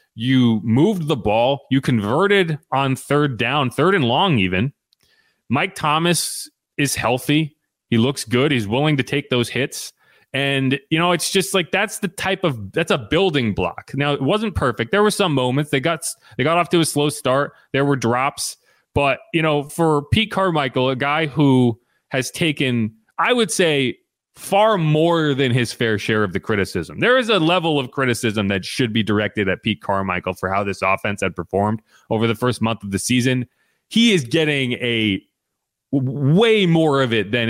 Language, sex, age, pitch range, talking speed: English, male, 30-49, 110-155 Hz, 190 wpm